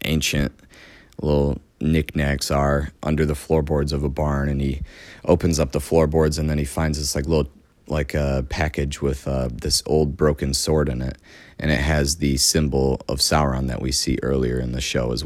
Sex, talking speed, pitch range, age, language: male, 195 wpm, 70-80 Hz, 30-49, English